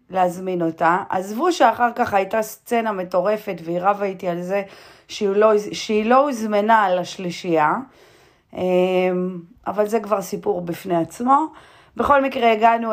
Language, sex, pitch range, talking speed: Hebrew, female, 165-210 Hz, 125 wpm